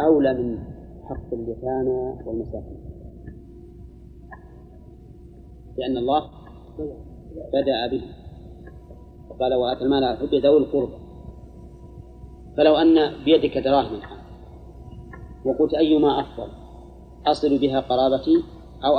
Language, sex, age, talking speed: Arabic, male, 30-49, 80 wpm